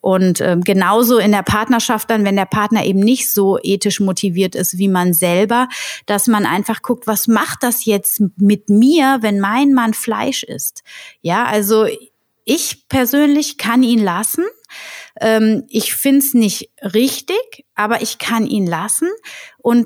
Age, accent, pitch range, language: 30-49, German, 200-250 Hz, German